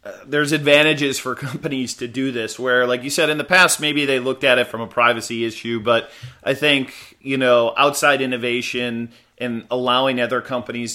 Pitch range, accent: 120-150 Hz, American